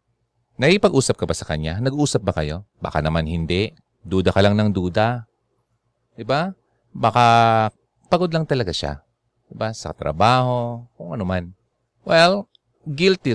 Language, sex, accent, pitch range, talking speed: Filipino, male, native, 95-125 Hz, 140 wpm